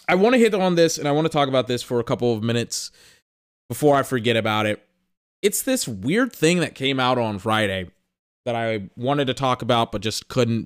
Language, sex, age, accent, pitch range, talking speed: English, male, 20-39, American, 115-155 Hz, 230 wpm